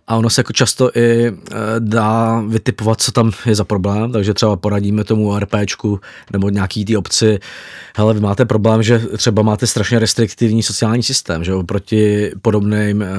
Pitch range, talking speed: 100-115 Hz, 165 wpm